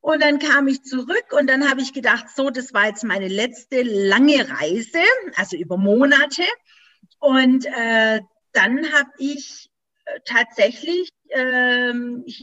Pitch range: 230-310 Hz